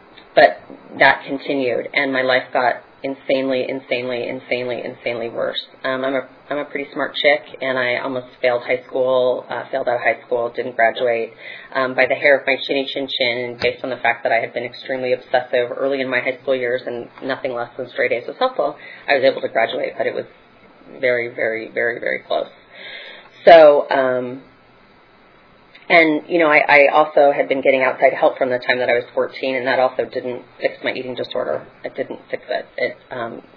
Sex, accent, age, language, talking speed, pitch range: female, American, 30-49, English, 205 wpm, 125-140 Hz